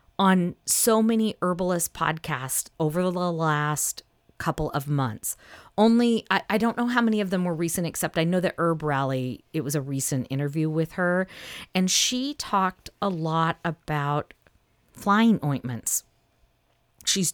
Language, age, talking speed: English, 40-59, 150 wpm